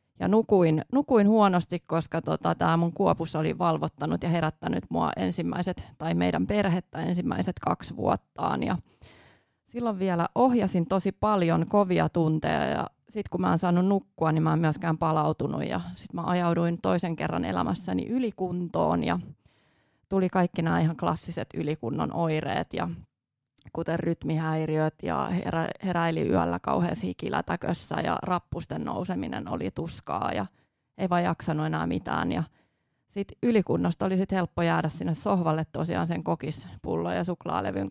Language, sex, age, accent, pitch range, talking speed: Finnish, female, 30-49, native, 150-180 Hz, 140 wpm